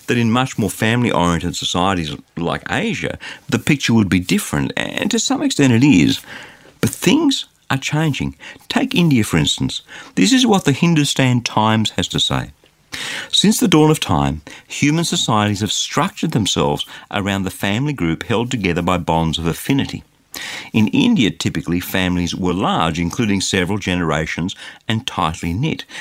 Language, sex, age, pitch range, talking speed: English, male, 50-69, 90-150 Hz, 155 wpm